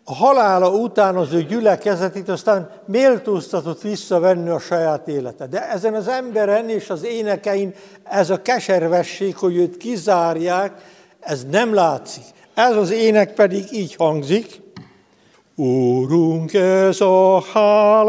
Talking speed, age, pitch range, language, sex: 125 wpm, 60-79, 165-220 Hz, Hungarian, male